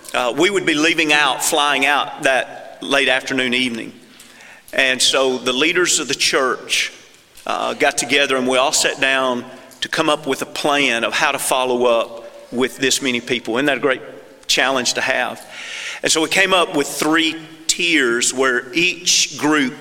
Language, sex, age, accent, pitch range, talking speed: English, male, 40-59, American, 130-155 Hz, 180 wpm